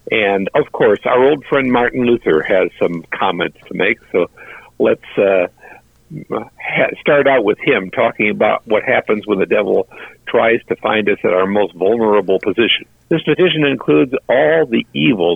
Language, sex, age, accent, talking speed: English, male, 60-79, American, 170 wpm